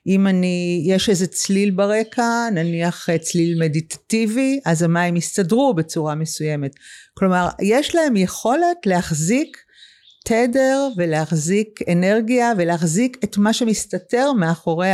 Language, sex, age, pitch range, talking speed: Hebrew, female, 50-69, 165-220 Hz, 110 wpm